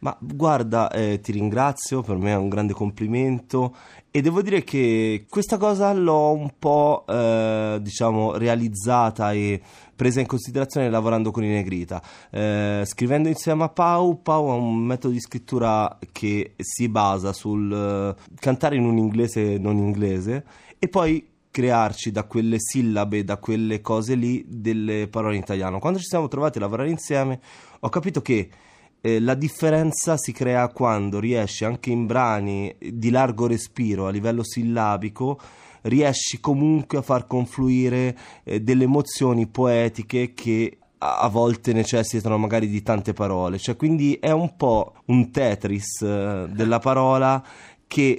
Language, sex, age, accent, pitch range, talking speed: Italian, male, 20-39, native, 105-130 Hz, 145 wpm